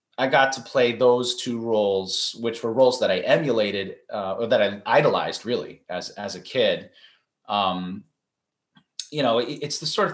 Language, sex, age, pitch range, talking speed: English, male, 30-49, 110-150 Hz, 185 wpm